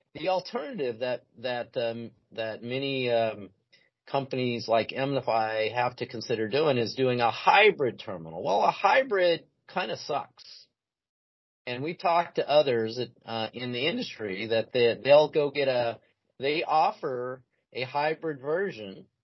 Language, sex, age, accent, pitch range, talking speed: English, male, 40-59, American, 120-170 Hz, 145 wpm